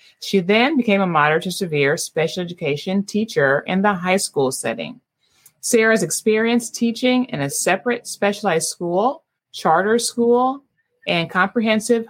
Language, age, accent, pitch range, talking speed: English, 30-49, American, 155-220 Hz, 135 wpm